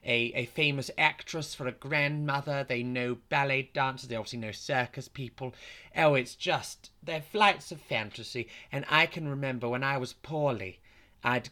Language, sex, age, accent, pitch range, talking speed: English, male, 30-49, British, 115-145 Hz, 165 wpm